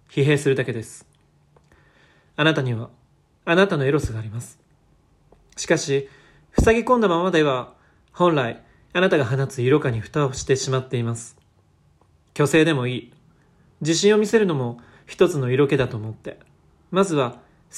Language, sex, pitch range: Japanese, male, 120-155 Hz